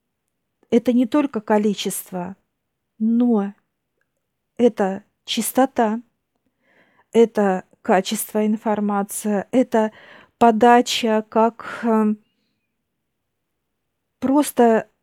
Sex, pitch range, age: female, 205-240 Hz, 50-69